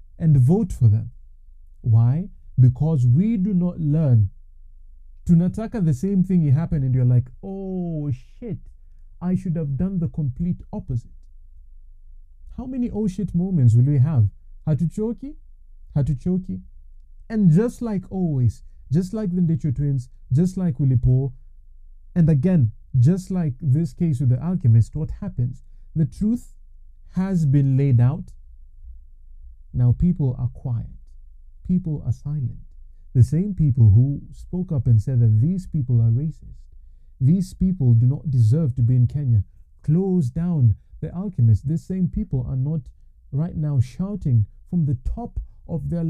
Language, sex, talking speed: English, male, 145 wpm